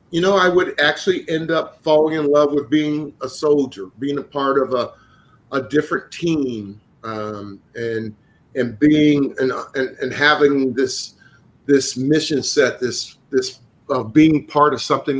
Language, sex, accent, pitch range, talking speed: English, male, American, 115-145 Hz, 165 wpm